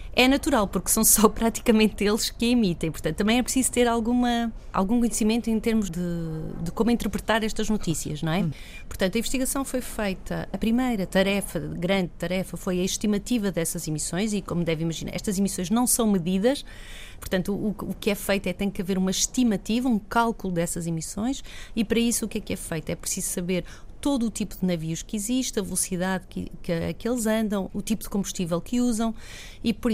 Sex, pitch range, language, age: female, 175-220 Hz, Portuguese, 30-49